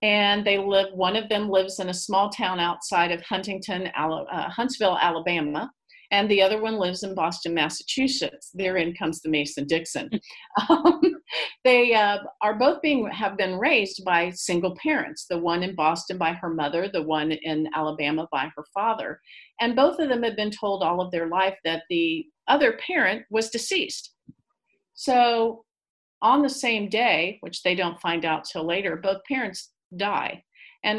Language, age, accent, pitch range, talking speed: English, 50-69, American, 170-235 Hz, 170 wpm